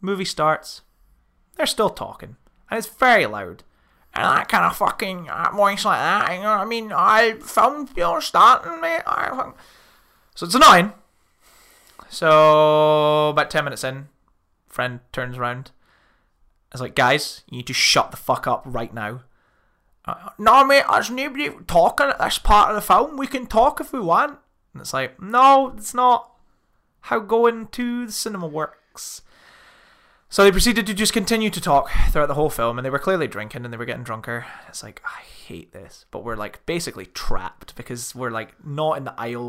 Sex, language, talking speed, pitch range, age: male, English, 185 wpm, 120-200 Hz, 20-39